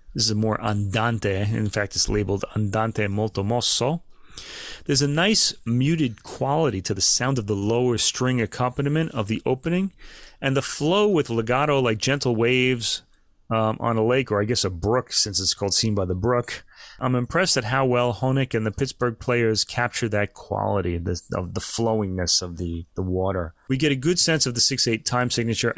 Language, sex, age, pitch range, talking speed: English, male, 30-49, 110-140 Hz, 190 wpm